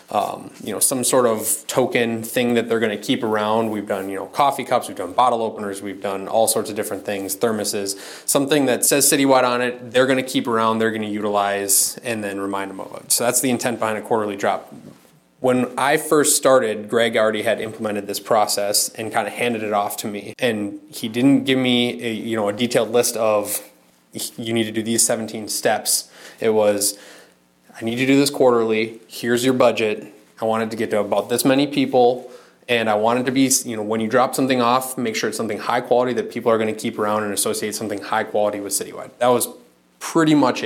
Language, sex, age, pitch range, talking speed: English, male, 20-39, 105-120 Hz, 225 wpm